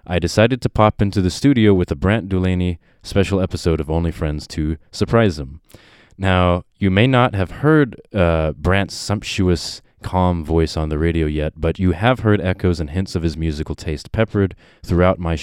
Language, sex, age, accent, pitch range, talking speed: English, male, 20-39, American, 80-100 Hz, 185 wpm